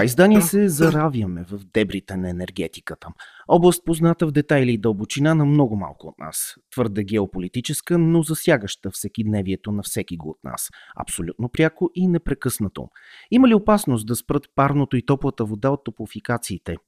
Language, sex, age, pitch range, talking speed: Bulgarian, male, 30-49, 100-140 Hz, 155 wpm